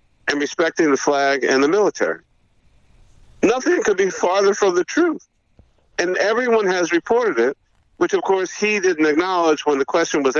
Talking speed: 165 wpm